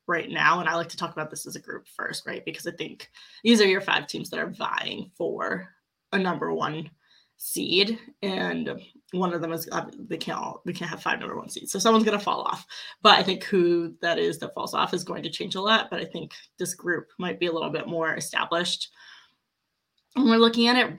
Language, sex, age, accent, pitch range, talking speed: English, female, 20-39, American, 170-205 Hz, 235 wpm